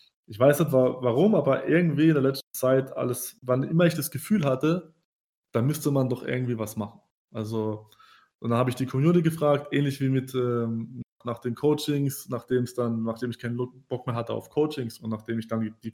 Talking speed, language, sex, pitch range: 205 wpm, German, male, 115-145 Hz